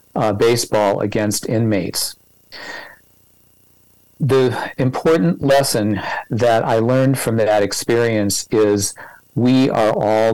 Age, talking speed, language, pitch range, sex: 50-69, 100 wpm, English, 110-130 Hz, male